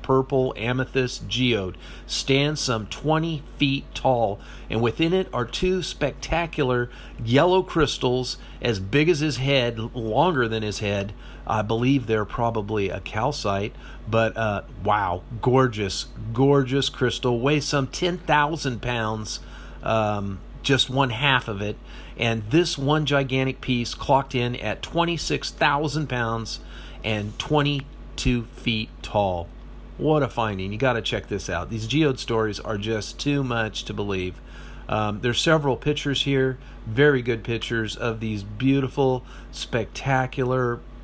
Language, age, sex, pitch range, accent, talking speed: English, 50-69, male, 110-135 Hz, American, 135 wpm